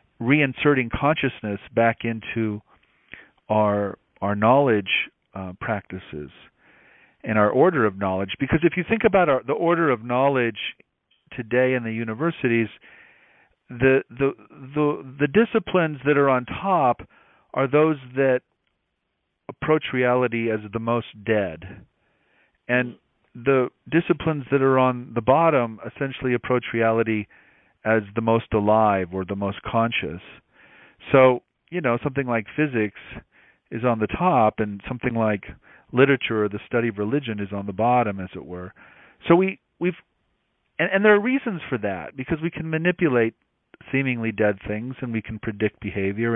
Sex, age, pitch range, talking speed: male, 40-59, 105-140 Hz, 145 wpm